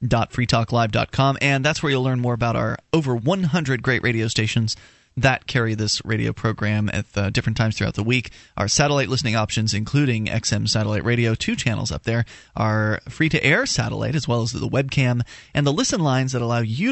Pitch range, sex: 110-145 Hz, male